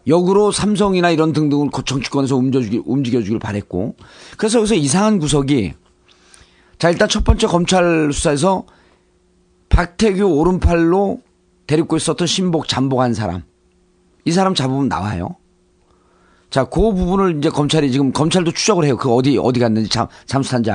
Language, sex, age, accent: Korean, male, 40-59, native